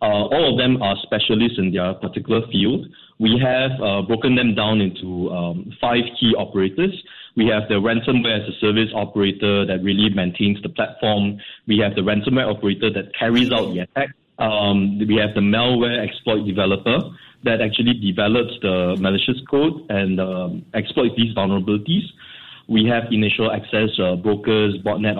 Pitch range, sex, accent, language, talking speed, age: 100-115 Hz, male, Malaysian, English, 165 wpm, 20-39